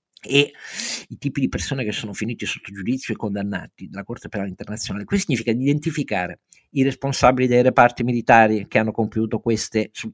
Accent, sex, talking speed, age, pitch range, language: native, male, 170 wpm, 50-69, 115-180 Hz, Italian